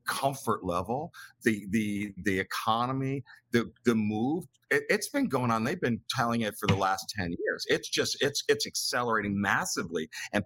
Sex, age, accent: male, 50-69, American